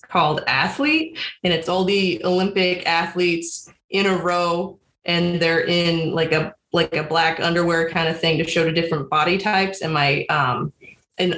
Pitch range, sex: 170-205 Hz, female